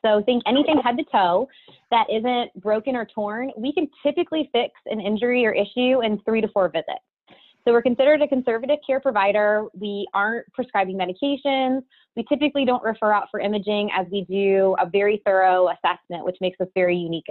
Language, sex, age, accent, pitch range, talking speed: English, female, 20-39, American, 195-255 Hz, 185 wpm